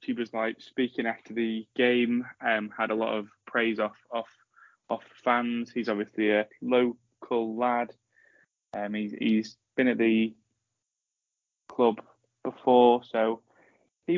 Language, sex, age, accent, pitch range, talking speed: English, male, 10-29, British, 115-125 Hz, 135 wpm